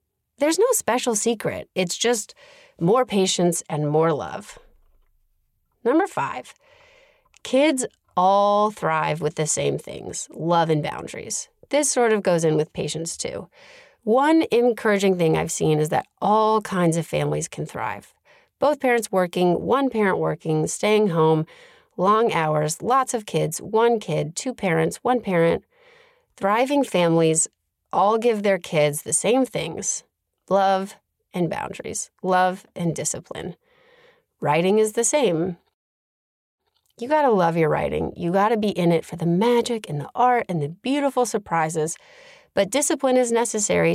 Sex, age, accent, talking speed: female, 30-49, American, 145 wpm